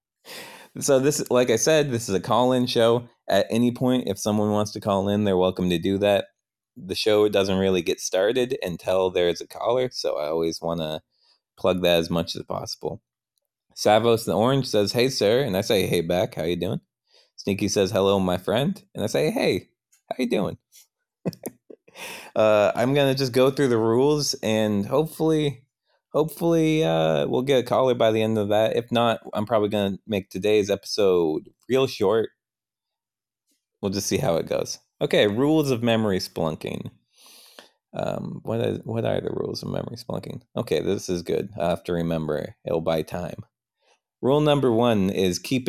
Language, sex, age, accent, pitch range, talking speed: English, male, 20-39, American, 95-130 Hz, 185 wpm